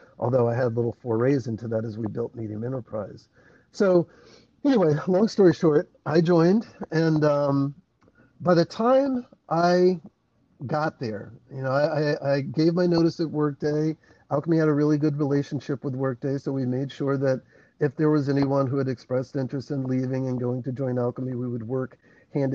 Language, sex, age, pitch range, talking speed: English, male, 50-69, 120-150 Hz, 180 wpm